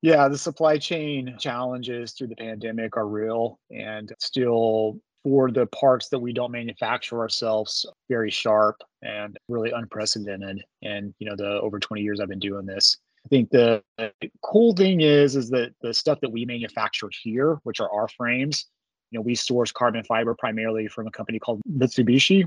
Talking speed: 175 wpm